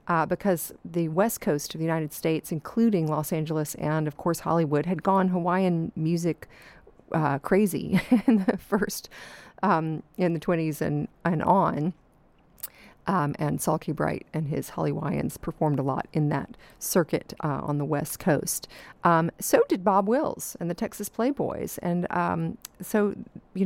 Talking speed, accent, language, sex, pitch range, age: 160 wpm, American, English, female, 155-185 Hz, 40-59